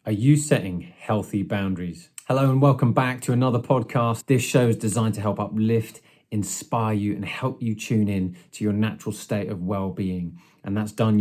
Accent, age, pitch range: British, 30-49, 100-130 Hz